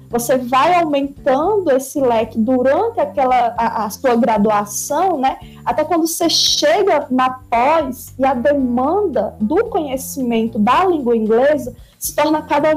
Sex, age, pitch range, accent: female, 20-39, 240-285 Hz, Brazilian